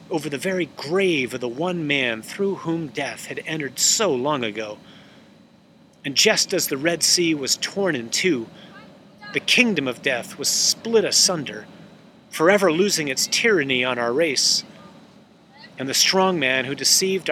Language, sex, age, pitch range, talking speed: English, male, 40-59, 150-195 Hz, 160 wpm